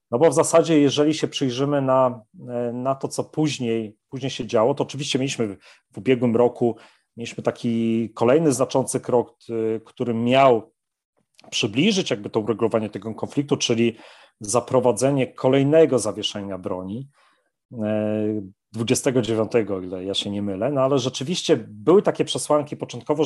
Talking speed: 135 wpm